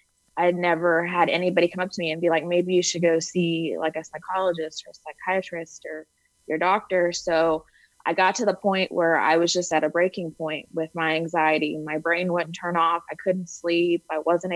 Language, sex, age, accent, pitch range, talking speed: English, female, 20-39, American, 160-180 Hz, 215 wpm